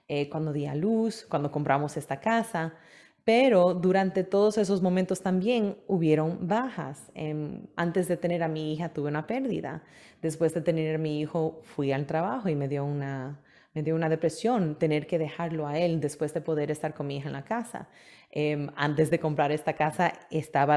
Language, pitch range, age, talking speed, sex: English, 155-180 Hz, 30-49, 190 wpm, female